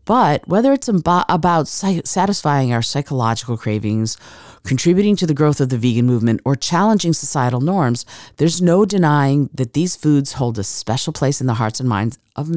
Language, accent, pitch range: English, American, 120-170 Hz